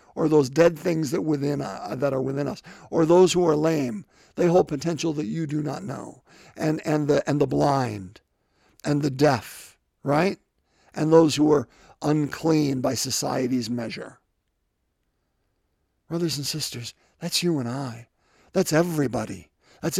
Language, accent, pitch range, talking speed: English, American, 145-215 Hz, 155 wpm